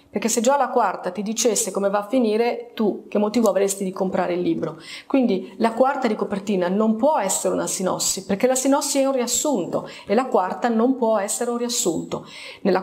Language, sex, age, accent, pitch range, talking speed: Italian, female, 30-49, native, 195-255 Hz, 205 wpm